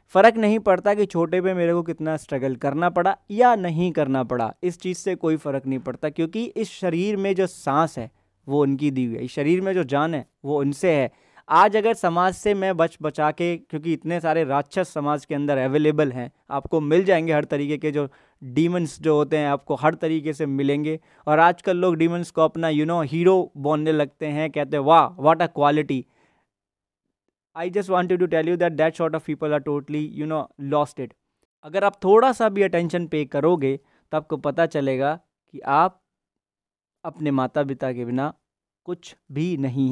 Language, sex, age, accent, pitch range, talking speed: Hindi, male, 20-39, native, 145-175 Hz, 200 wpm